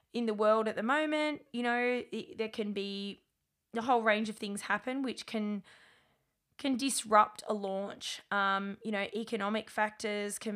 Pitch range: 200-240 Hz